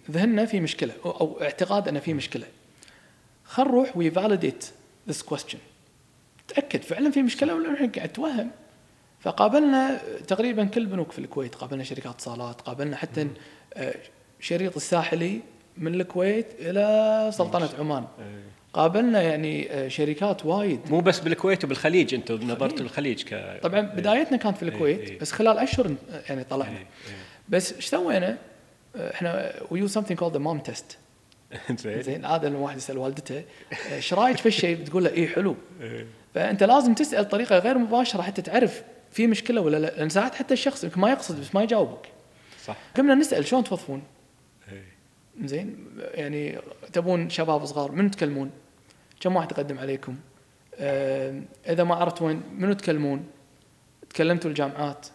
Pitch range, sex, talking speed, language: 140-205 Hz, male, 140 wpm, Arabic